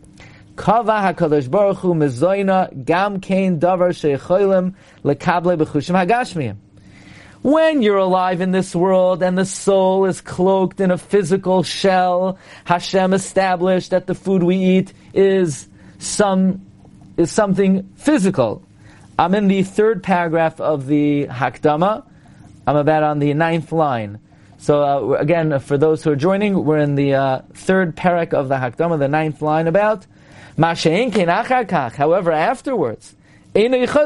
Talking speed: 115 wpm